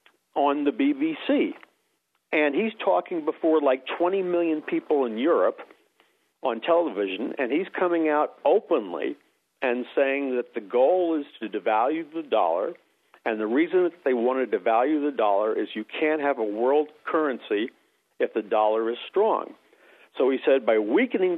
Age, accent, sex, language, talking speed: 50-69, American, male, English, 160 wpm